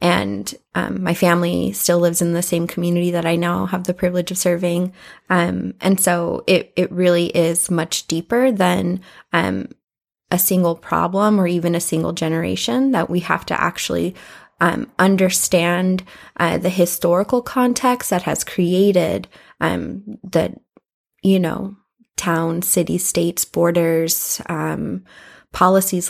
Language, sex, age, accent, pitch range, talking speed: English, female, 20-39, American, 170-190 Hz, 140 wpm